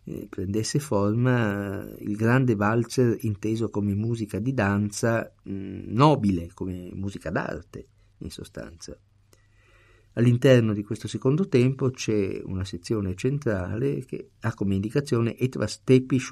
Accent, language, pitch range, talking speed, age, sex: native, Italian, 100-125 Hz, 115 wpm, 50-69, male